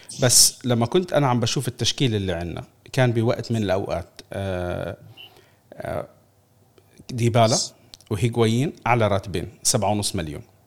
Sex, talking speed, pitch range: male, 105 wpm, 105-135 Hz